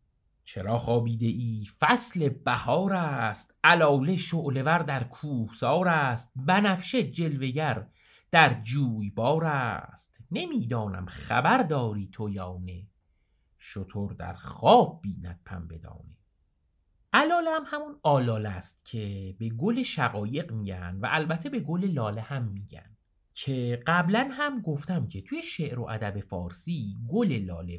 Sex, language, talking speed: male, Persian, 125 wpm